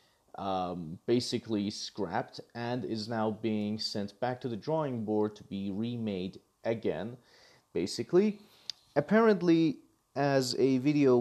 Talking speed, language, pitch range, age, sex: 120 wpm, English, 100-125 Hz, 30-49, male